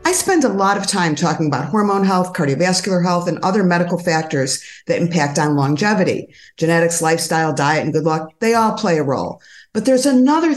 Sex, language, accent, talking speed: female, English, American, 195 wpm